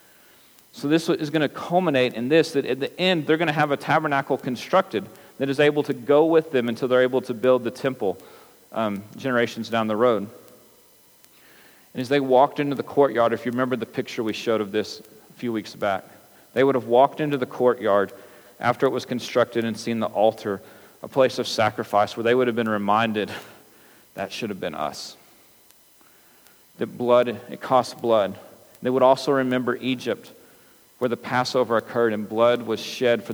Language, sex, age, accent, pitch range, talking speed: English, male, 40-59, American, 110-130 Hz, 195 wpm